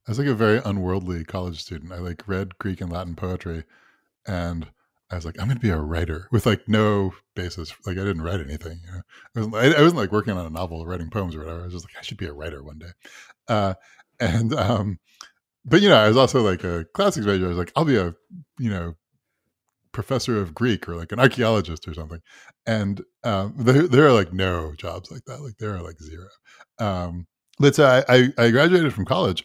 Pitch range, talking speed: 85-110 Hz, 225 wpm